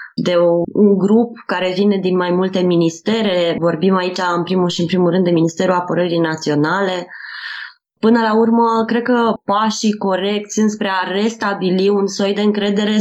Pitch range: 180-225 Hz